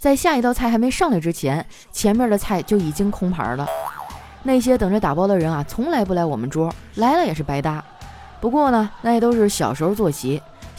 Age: 20-39